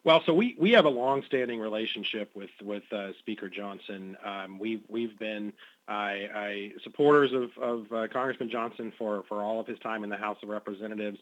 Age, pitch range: 40-59, 105-125 Hz